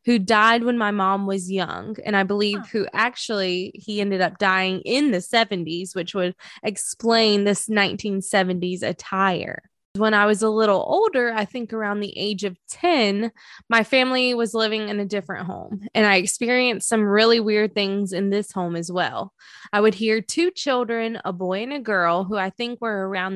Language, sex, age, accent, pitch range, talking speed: English, female, 20-39, American, 190-230 Hz, 190 wpm